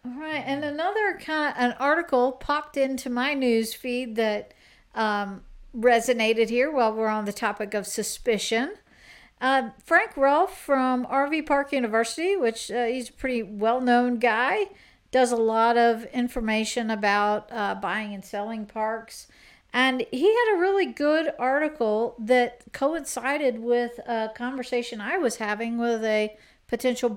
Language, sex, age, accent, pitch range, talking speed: English, female, 60-79, American, 225-280 Hz, 150 wpm